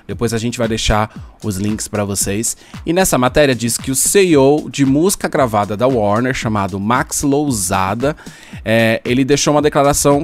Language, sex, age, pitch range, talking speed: Portuguese, male, 20-39, 115-150 Hz, 170 wpm